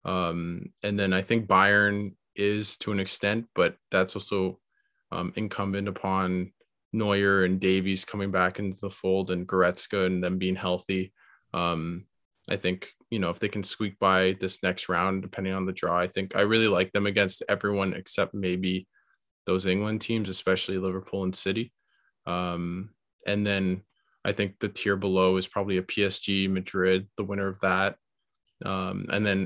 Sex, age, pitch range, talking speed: male, 20-39, 95-105 Hz, 170 wpm